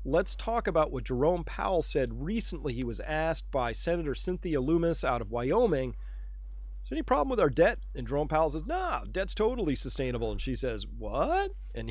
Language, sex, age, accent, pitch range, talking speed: Dutch, male, 40-59, American, 120-165 Hz, 190 wpm